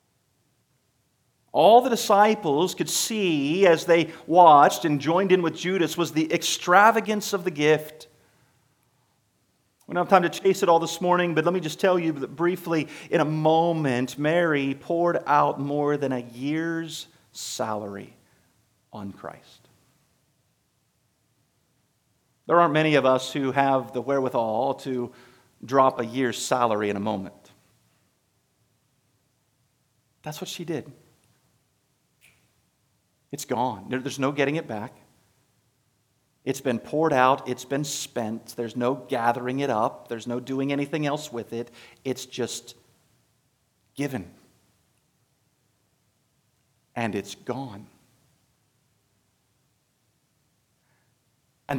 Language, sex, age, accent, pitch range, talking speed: English, male, 40-59, American, 120-160 Hz, 120 wpm